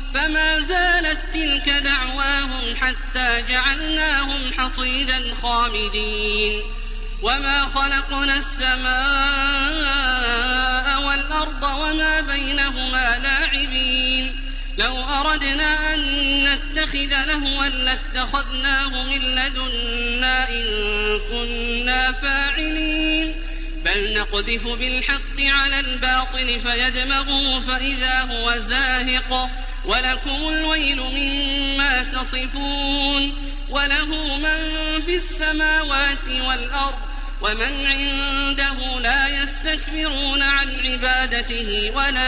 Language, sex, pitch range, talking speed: Arabic, male, 255-280 Hz, 70 wpm